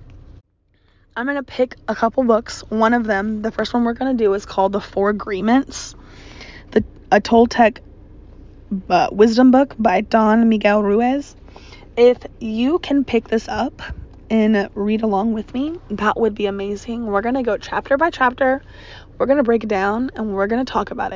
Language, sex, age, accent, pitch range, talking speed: English, female, 20-39, American, 200-250 Hz, 185 wpm